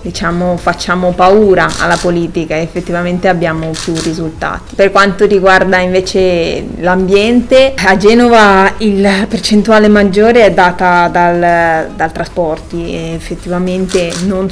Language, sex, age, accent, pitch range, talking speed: Italian, female, 20-39, native, 175-195 Hz, 110 wpm